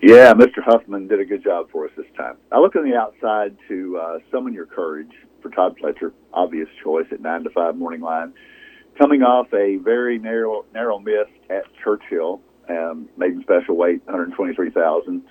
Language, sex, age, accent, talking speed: English, male, 50-69, American, 190 wpm